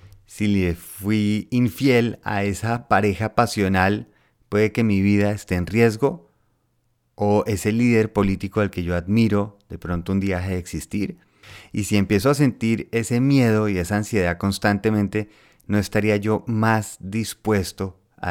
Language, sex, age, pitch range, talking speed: Spanish, male, 30-49, 90-110 Hz, 155 wpm